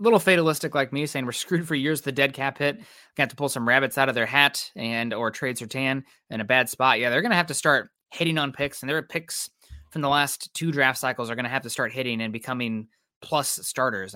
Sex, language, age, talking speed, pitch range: male, English, 20-39, 260 wpm, 125-160 Hz